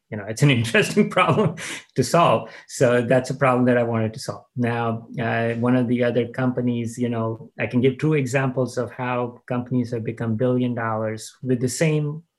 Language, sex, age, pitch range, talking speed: English, male, 30-49, 110-130 Hz, 200 wpm